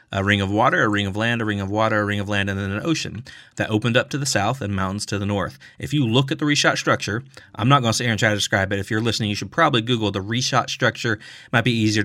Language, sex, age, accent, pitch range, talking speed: English, male, 30-49, American, 100-115 Hz, 315 wpm